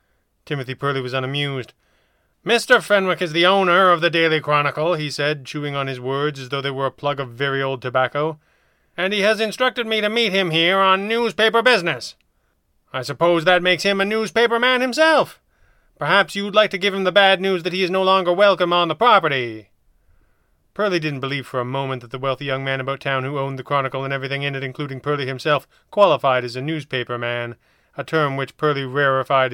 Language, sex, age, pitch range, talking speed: English, male, 30-49, 135-180 Hz, 210 wpm